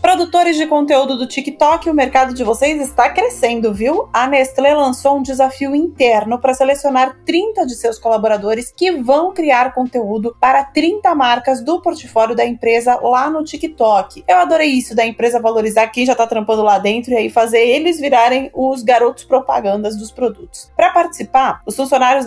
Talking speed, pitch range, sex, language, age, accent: 170 wpm, 235-290 Hz, female, Portuguese, 20-39, Brazilian